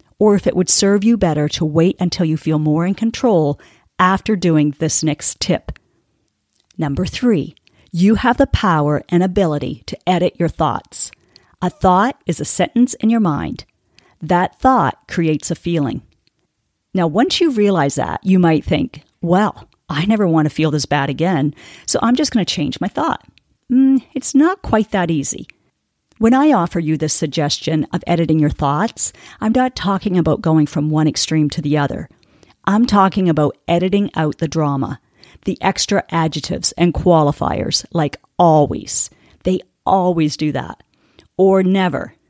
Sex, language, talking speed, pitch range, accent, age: female, English, 165 wpm, 155-205 Hz, American, 40-59